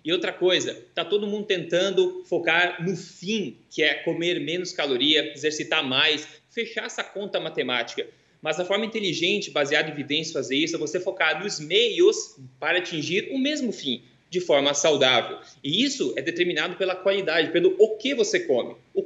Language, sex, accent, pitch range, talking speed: Portuguese, male, Brazilian, 165-235 Hz, 175 wpm